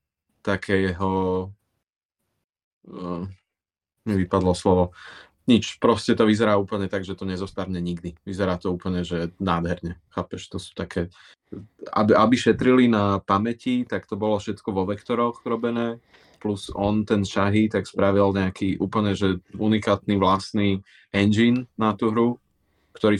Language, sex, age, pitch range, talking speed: Slovak, male, 20-39, 95-105 Hz, 135 wpm